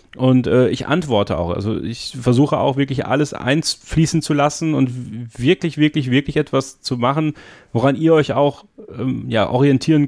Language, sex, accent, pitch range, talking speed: German, male, German, 110-135 Hz, 180 wpm